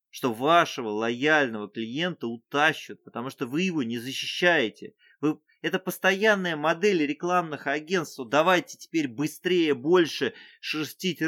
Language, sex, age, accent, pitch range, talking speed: Russian, male, 30-49, native, 130-170 Hz, 115 wpm